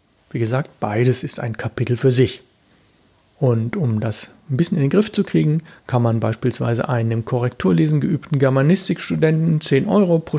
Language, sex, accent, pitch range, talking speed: German, male, German, 120-165 Hz, 170 wpm